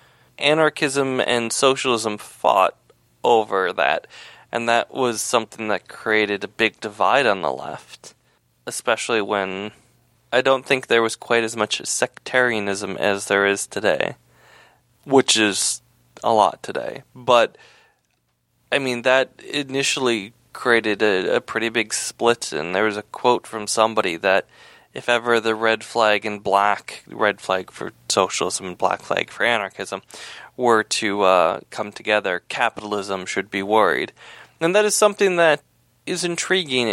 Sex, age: male, 20-39